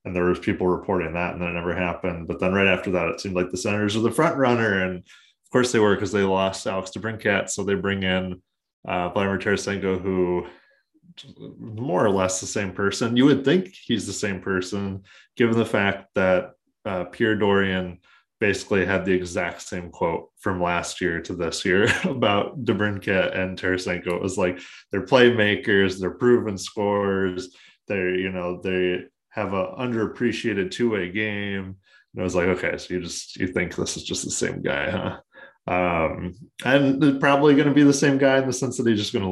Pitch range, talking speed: 90-110 Hz, 200 wpm